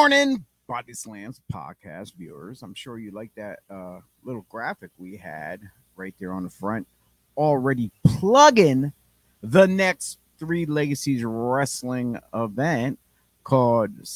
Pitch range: 105-155 Hz